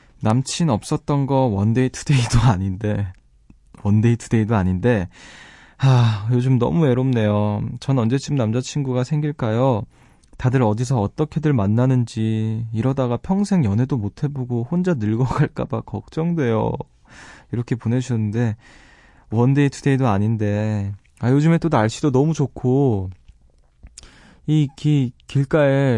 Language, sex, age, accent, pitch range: Korean, male, 20-39, native, 105-140 Hz